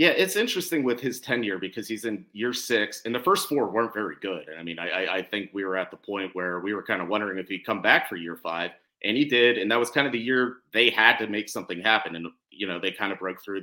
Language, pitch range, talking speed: English, 95-120 Hz, 290 wpm